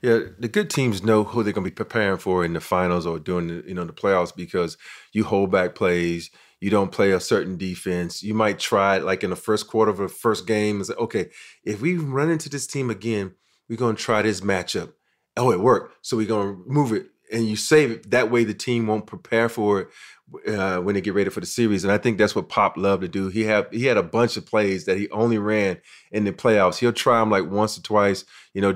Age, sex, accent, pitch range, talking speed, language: 30-49, male, American, 100-110 Hz, 255 wpm, English